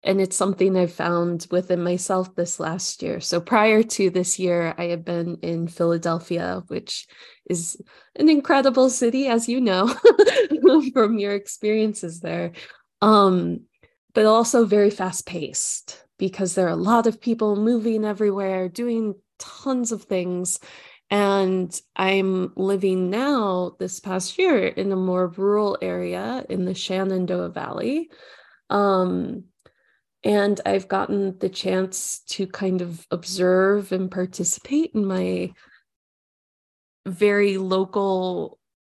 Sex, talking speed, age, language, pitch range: female, 130 wpm, 20-39, English, 180-215 Hz